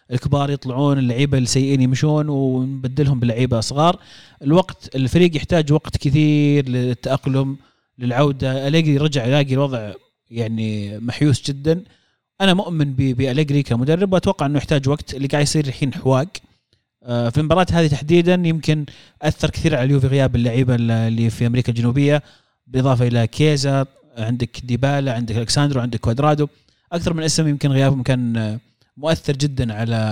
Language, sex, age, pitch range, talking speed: Arabic, male, 30-49, 130-160 Hz, 135 wpm